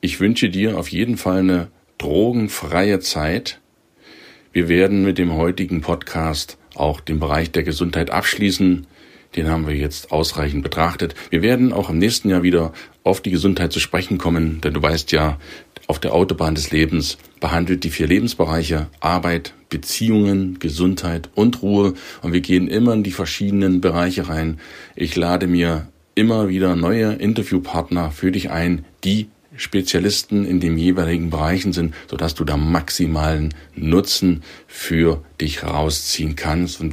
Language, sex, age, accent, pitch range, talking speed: German, male, 40-59, German, 80-95 Hz, 155 wpm